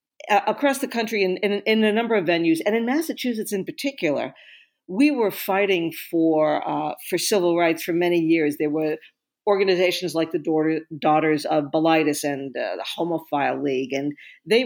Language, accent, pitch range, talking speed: English, American, 155-220 Hz, 170 wpm